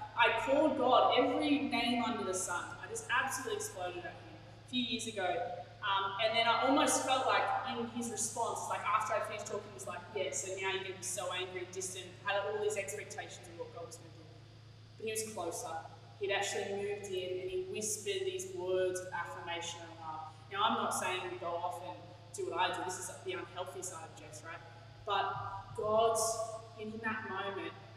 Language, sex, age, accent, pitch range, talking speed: English, female, 20-39, Australian, 140-215 Hz, 205 wpm